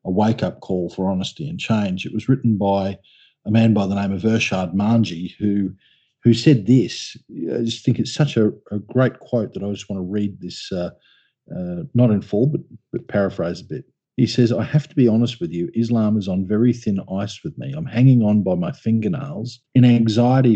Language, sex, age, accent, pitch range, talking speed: English, male, 40-59, Australian, 100-125 Hz, 215 wpm